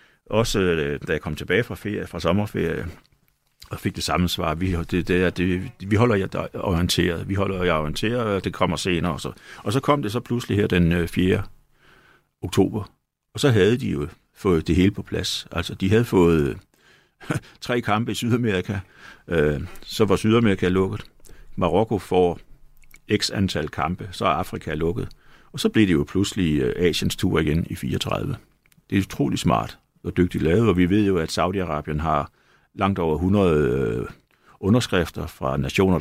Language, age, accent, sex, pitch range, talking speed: Danish, 60-79, native, male, 85-105 Hz, 170 wpm